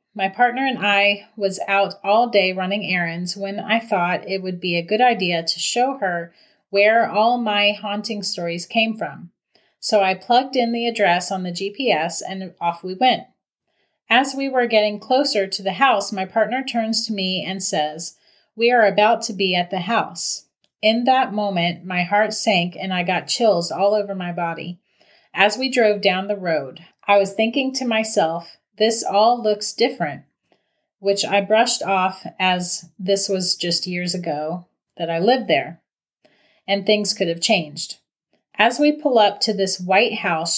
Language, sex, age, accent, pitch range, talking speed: English, female, 30-49, American, 180-220 Hz, 180 wpm